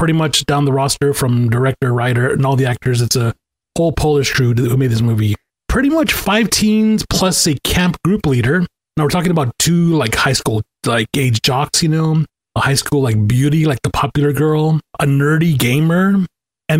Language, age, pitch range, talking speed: English, 30-49, 135-180 Hz, 200 wpm